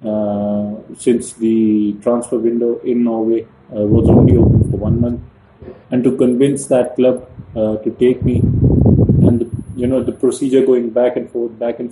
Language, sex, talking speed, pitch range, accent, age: English, male, 175 wpm, 110-125 Hz, Indian, 30-49